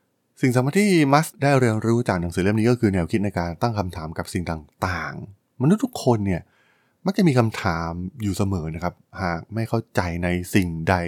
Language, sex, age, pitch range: Thai, male, 20-39, 90-125 Hz